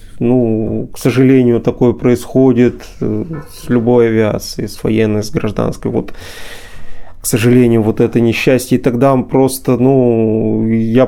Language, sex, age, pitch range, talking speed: Russian, male, 30-49, 110-130 Hz, 125 wpm